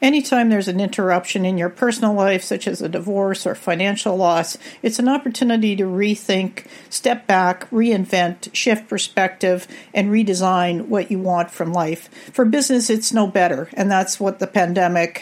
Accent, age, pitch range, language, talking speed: American, 50-69, 180-225 Hz, English, 165 wpm